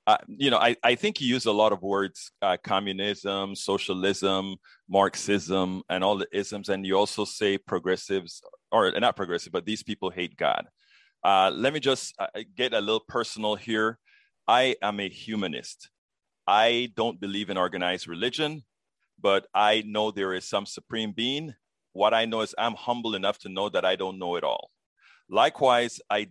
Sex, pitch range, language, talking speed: male, 95-115 Hz, English, 180 wpm